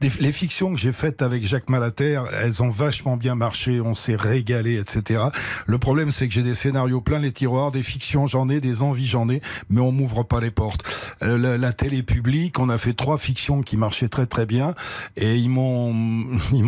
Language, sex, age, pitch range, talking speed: French, male, 60-79, 110-130 Hz, 215 wpm